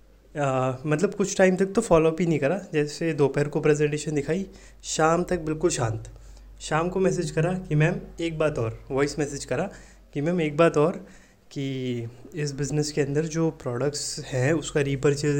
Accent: native